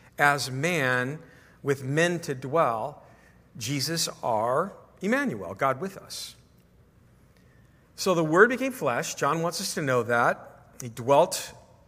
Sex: male